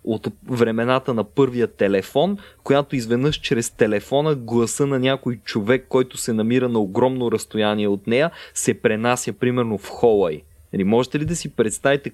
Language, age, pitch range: Bulgarian, 20-39, 105-135 Hz